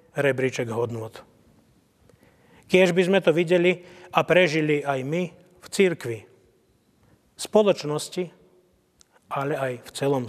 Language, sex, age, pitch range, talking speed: Slovak, male, 30-49, 140-175 Hz, 110 wpm